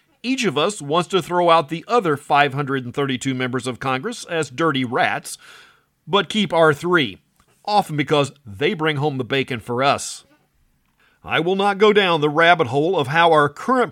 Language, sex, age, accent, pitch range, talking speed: English, male, 40-59, American, 145-205 Hz, 175 wpm